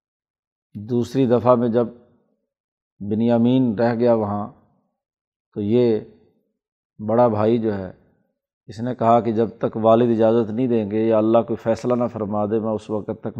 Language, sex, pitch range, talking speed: Urdu, male, 110-130 Hz, 160 wpm